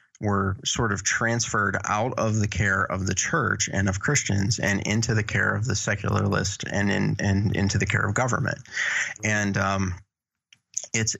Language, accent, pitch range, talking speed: English, American, 100-115 Hz, 170 wpm